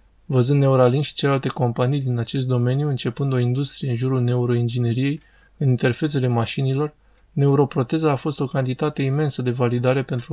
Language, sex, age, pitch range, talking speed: Romanian, male, 20-39, 120-140 Hz, 150 wpm